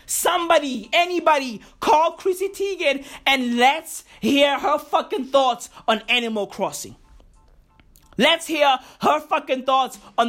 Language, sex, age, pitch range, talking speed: English, male, 20-39, 180-290 Hz, 115 wpm